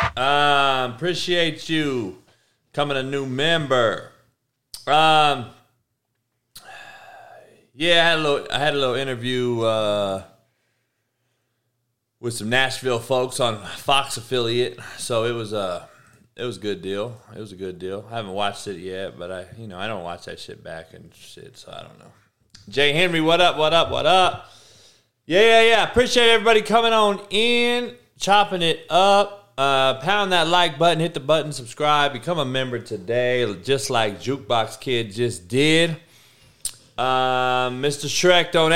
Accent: American